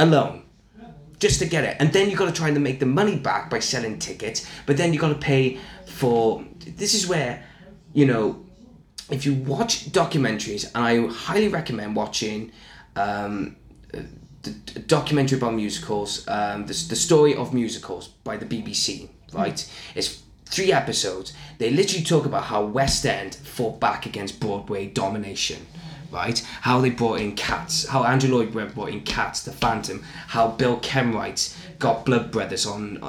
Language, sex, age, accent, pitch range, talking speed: English, male, 20-39, British, 110-145 Hz, 165 wpm